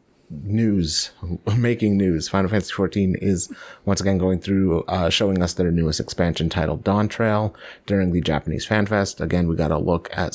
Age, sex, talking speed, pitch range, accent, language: 30-49, male, 180 wpm, 85-110 Hz, American, English